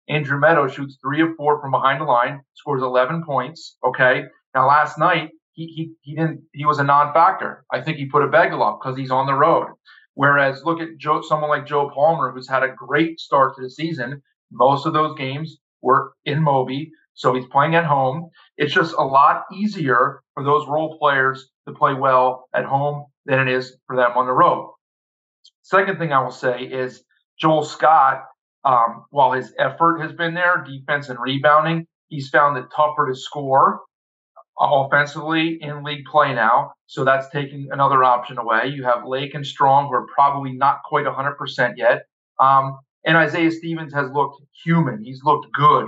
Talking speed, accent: 185 wpm, American